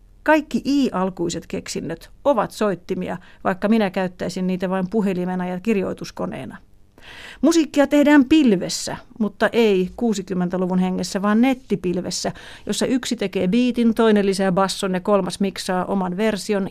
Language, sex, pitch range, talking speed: Finnish, female, 185-220 Hz, 120 wpm